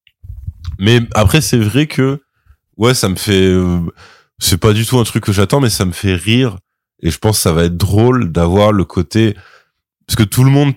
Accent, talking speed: French, 215 wpm